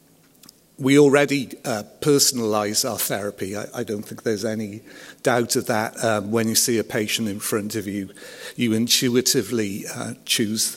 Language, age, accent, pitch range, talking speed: English, 50-69, British, 110-125 Hz, 160 wpm